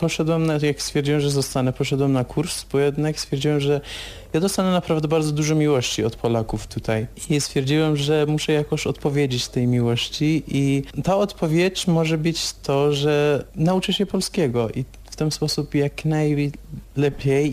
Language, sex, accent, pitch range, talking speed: Polish, male, native, 125-155 Hz, 150 wpm